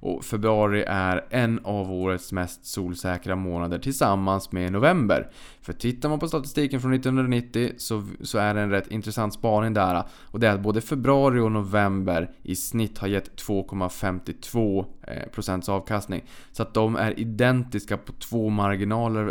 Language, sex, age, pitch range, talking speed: Swedish, male, 20-39, 95-110 Hz, 160 wpm